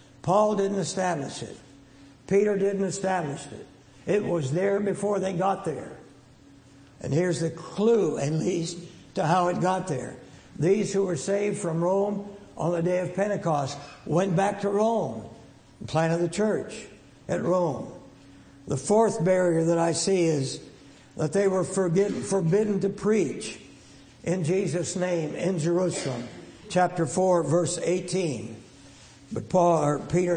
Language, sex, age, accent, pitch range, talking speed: English, male, 60-79, American, 140-190 Hz, 145 wpm